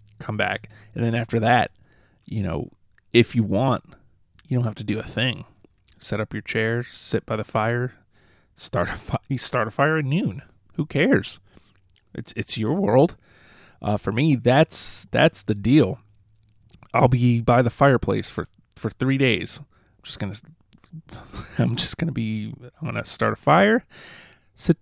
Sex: male